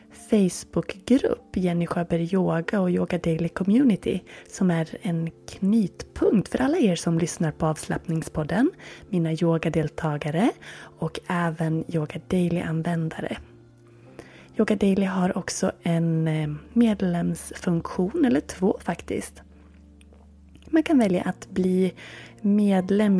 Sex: female